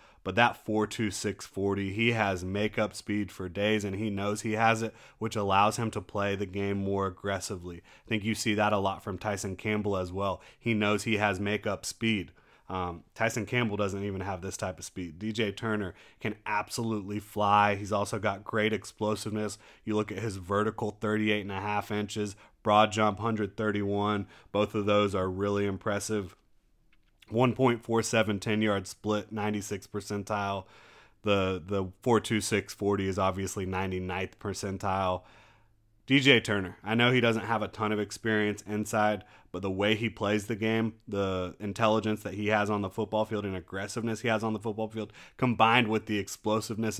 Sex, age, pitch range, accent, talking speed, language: male, 30-49, 100-110 Hz, American, 170 wpm, English